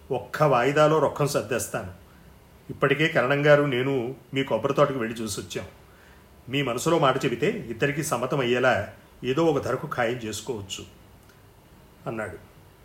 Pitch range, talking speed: 115-145 Hz, 115 wpm